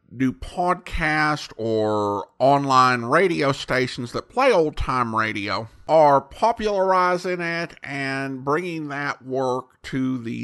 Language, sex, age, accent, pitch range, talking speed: English, male, 50-69, American, 135-190 Hz, 110 wpm